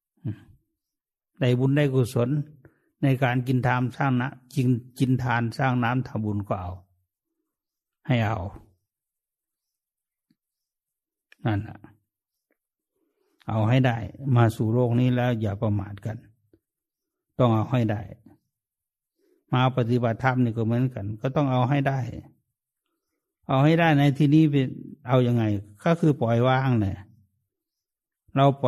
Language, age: English, 60-79